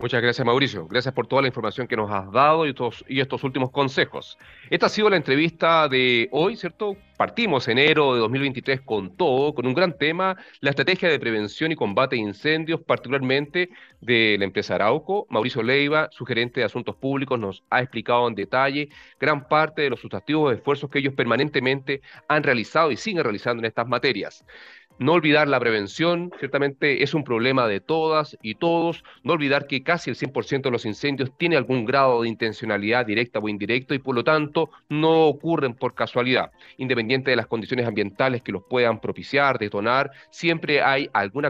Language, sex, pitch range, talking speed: Spanish, male, 120-155 Hz, 185 wpm